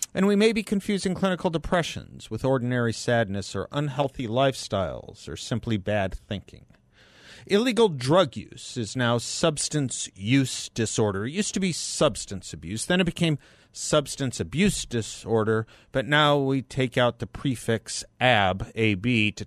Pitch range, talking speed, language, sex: 105-140 Hz, 140 wpm, English, male